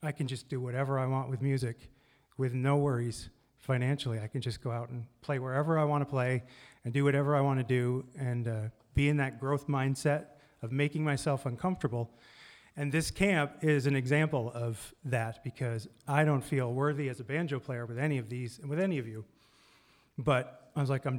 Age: 40-59